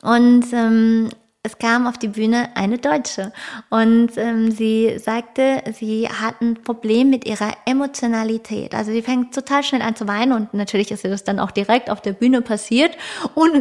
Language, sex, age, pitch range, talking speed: German, female, 20-39, 220-245 Hz, 175 wpm